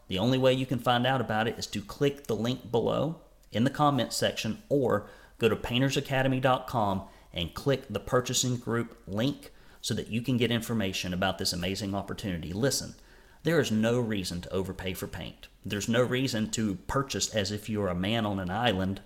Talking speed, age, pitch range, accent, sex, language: 200 wpm, 40-59, 100-125 Hz, American, male, English